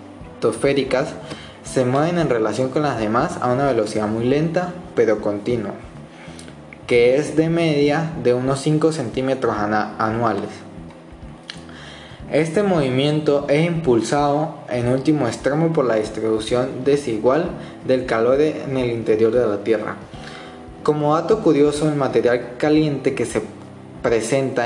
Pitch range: 110-150 Hz